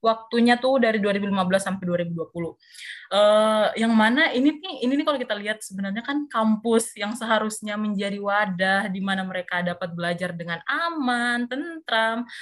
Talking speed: 150 wpm